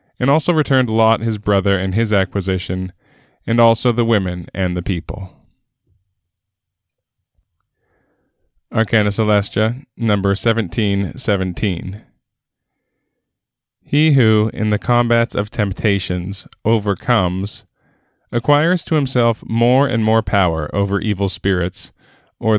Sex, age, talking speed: male, 20-39, 105 wpm